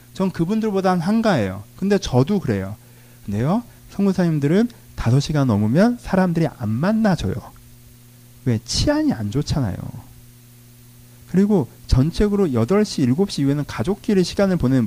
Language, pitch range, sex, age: Korean, 120-195 Hz, male, 40-59